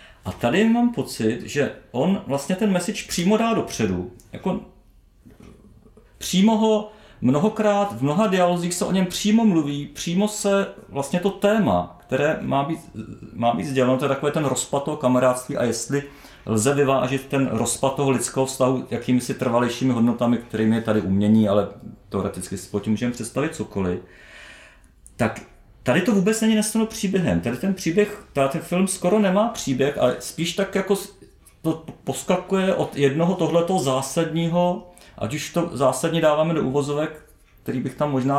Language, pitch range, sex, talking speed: Czech, 120-190 Hz, male, 160 wpm